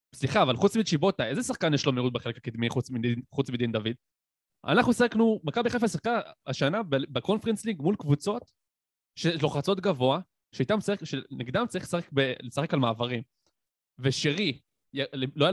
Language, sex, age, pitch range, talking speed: Hebrew, male, 20-39, 120-170 Hz, 115 wpm